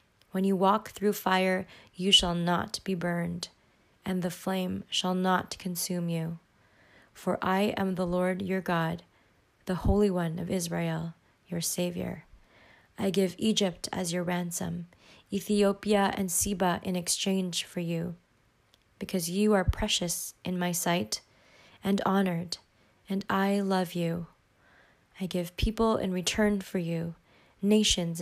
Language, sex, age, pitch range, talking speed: English, female, 20-39, 170-200 Hz, 140 wpm